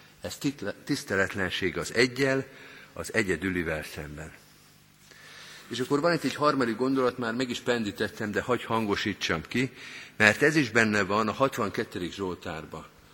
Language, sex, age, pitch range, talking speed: Hungarian, male, 50-69, 95-125 Hz, 135 wpm